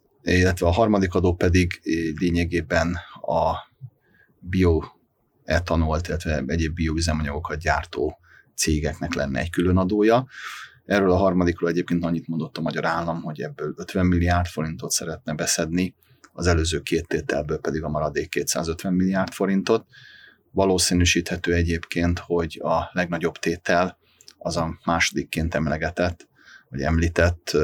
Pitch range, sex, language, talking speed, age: 85-95 Hz, male, Hungarian, 120 wpm, 30-49